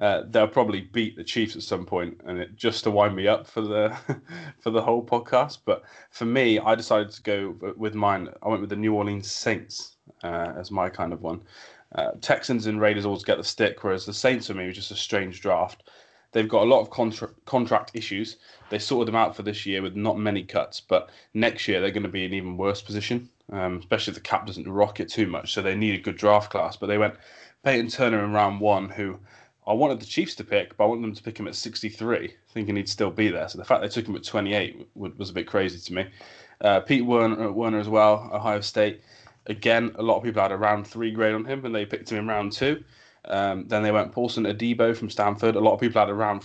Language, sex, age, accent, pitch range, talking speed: English, male, 20-39, British, 100-115 Hz, 250 wpm